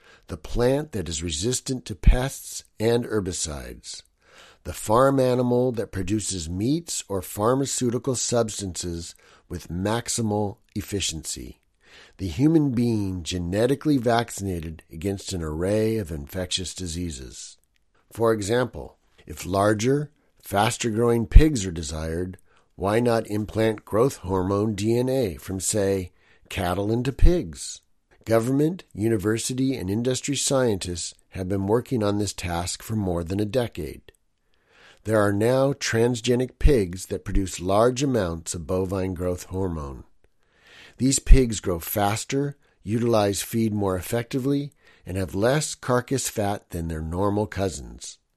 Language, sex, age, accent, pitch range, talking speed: English, male, 50-69, American, 90-120 Hz, 120 wpm